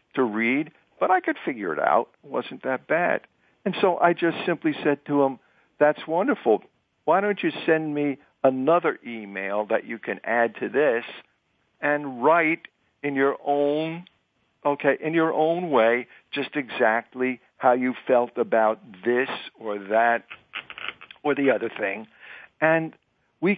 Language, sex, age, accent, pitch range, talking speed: English, male, 60-79, American, 120-165 Hz, 155 wpm